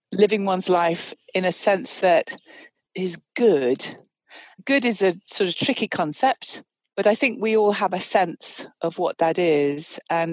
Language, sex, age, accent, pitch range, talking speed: English, female, 40-59, British, 165-205 Hz, 170 wpm